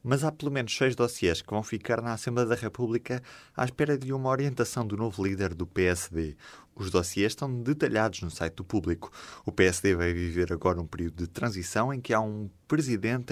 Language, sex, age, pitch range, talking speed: Portuguese, male, 20-39, 90-120 Hz, 205 wpm